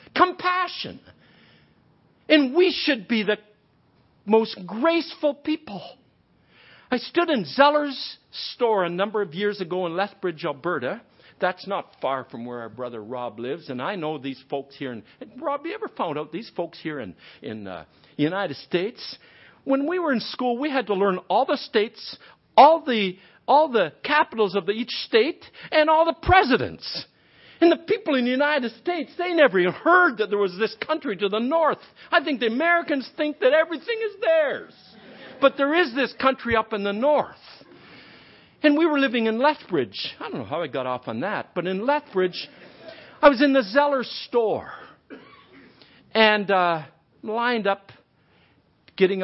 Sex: male